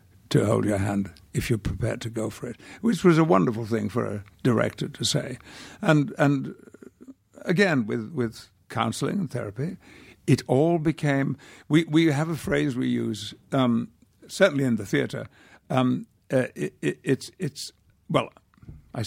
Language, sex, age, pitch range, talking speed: English, male, 60-79, 110-135 Hz, 165 wpm